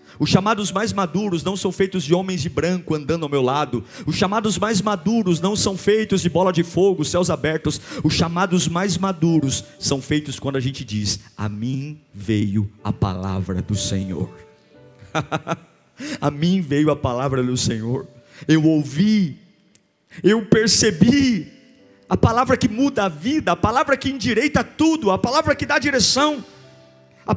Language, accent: Portuguese, Brazilian